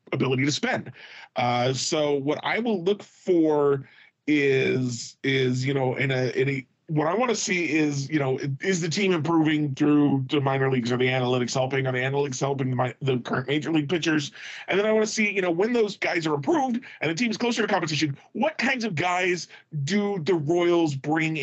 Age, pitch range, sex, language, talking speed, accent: 40-59, 135-170 Hz, male, English, 210 wpm, American